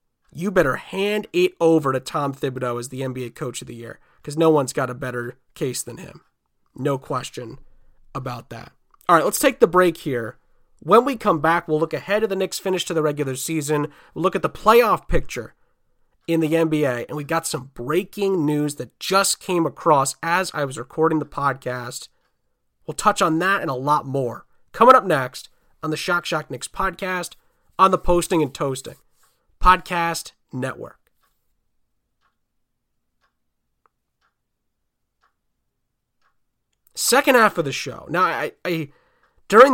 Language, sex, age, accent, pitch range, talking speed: English, male, 30-49, American, 140-190 Hz, 160 wpm